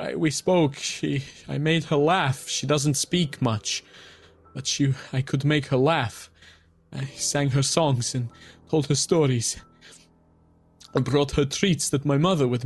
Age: 20-39